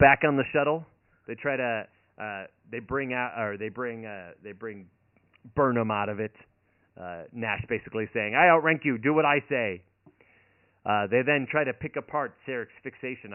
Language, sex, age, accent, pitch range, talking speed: English, male, 40-59, American, 95-125 Hz, 185 wpm